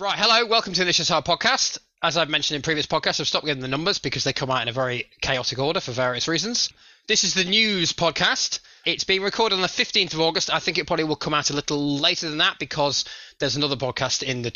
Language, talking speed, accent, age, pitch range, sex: English, 250 wpm, British, 20-39, 130-180 Hz, male